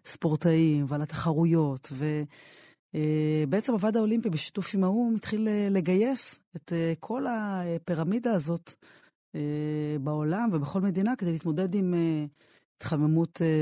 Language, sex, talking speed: Hebrew, female, 95 wpm